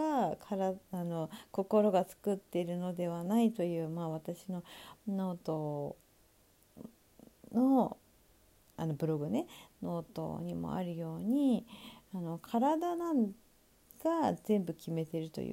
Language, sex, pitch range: Japanese, female, 185-270 Hz